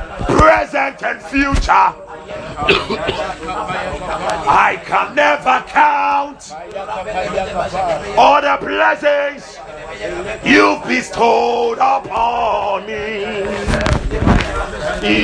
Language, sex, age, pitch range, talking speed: English, male, 40-59, 260-320 Hz, 55 wpm